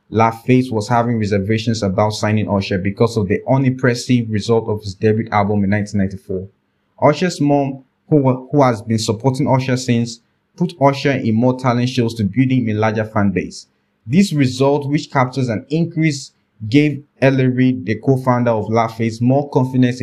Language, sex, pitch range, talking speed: English, male, 110-135 Hz, 160 wpm